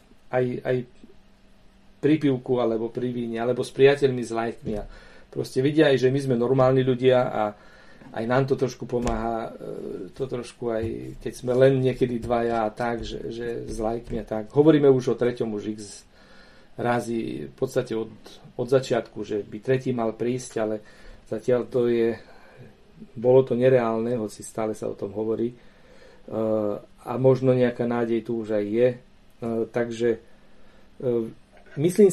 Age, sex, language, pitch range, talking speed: 40-59, male, Slovak, 110-130 Hz, 150 wpm